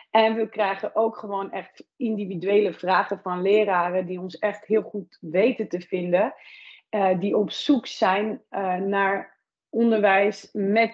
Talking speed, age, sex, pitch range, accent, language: 150 wpm, 30-49, female, 190-225 Hz, Dutch, Dutch